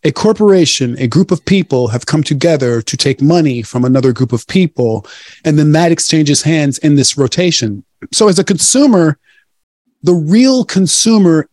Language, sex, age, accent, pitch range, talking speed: English, male, 40-59, American, 125-165 Hz, 165 wpm